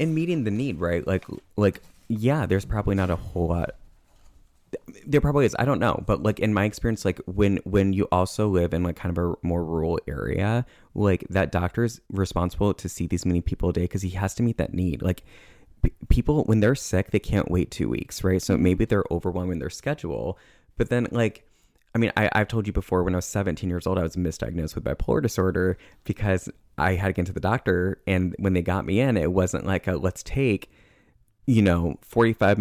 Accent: American